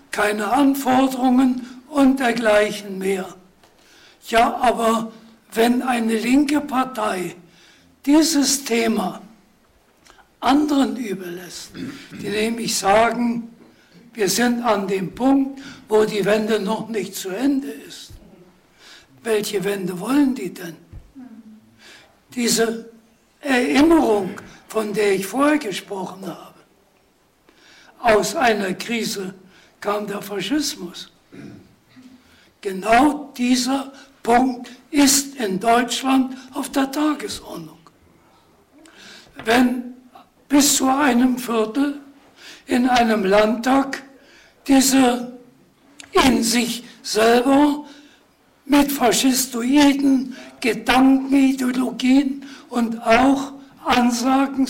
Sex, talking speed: male, 85 wpm